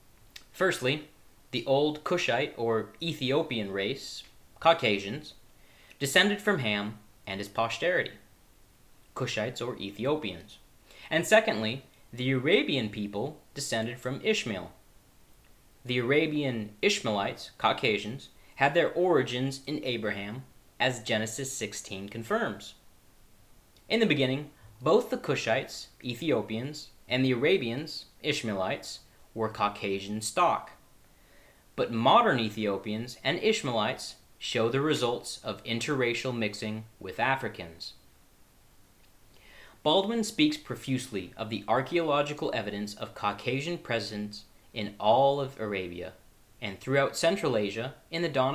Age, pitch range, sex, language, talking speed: 30-49, 105-145 Hz, male, English, 105 wpm